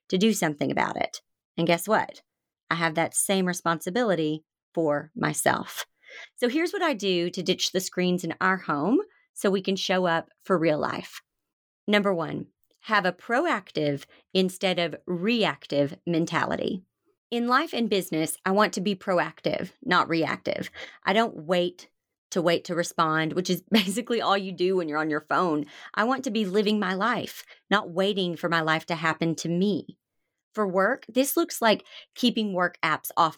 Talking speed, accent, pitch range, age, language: 175 wpm, American, 165-210 Hz, 30-49, English